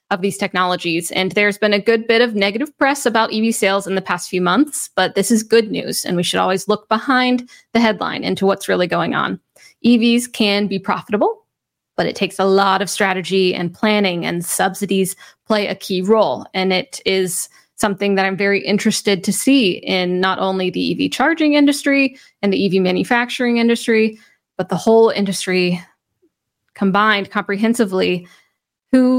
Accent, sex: American, female